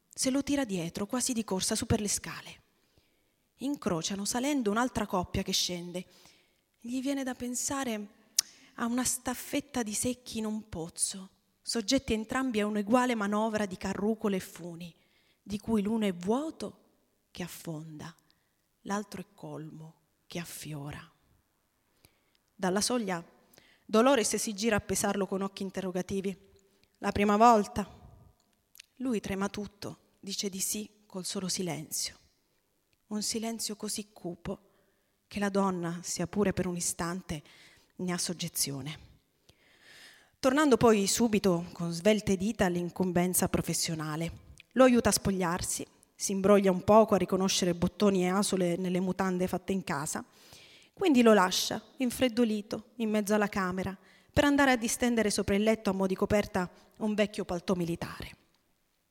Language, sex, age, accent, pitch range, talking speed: Italian, female, 30-49, native, 180-225 Hz, 140 wpm